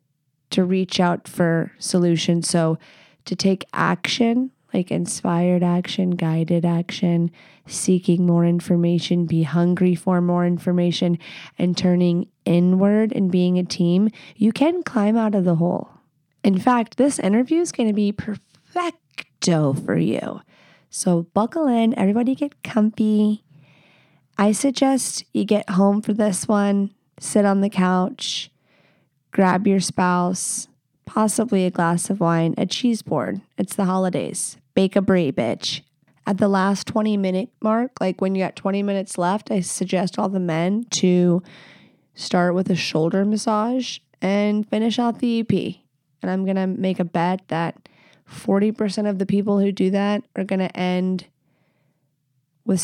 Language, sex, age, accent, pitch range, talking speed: English, female, 20-39, American, 175-210 Hz, 150 wpm